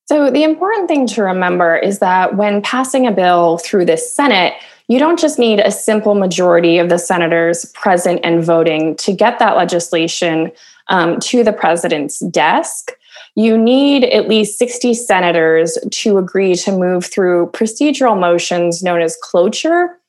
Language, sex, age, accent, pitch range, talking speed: English, female, 20-39, American, 180-235 Hz, 160 wpm